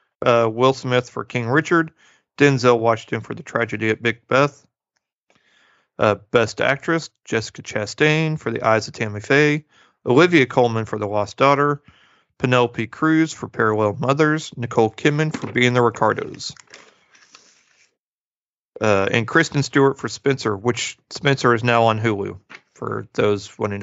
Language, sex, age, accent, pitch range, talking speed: English, male, 40-59, American, 115-145 Hz, 145 wpm